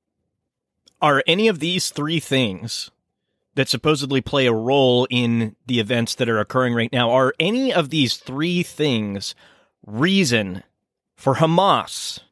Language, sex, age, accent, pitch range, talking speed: English, male, 30-49, American, 115-145 Hz, 135 wpm